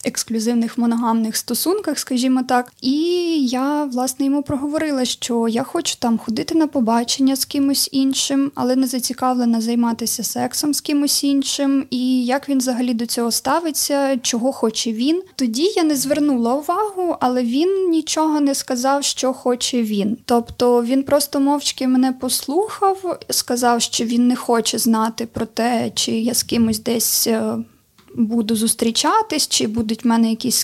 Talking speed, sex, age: 150 wpm, female, 20-39